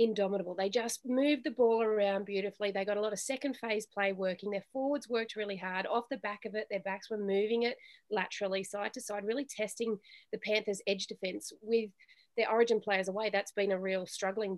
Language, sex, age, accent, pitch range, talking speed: English, female, 30-49, Australian, 205-260 Hz, 215 wpm